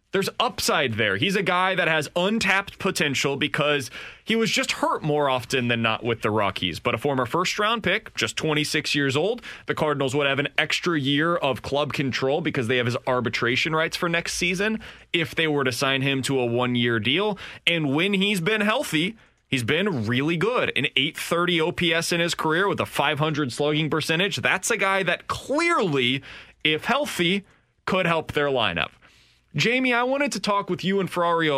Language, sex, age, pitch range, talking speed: English, male, 20-39, 135-200 Hz, 190 wpm